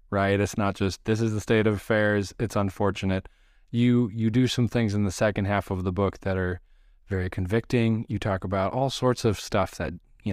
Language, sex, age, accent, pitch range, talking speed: English, male, 20-39, American, 95-115 Hz, 215 wpm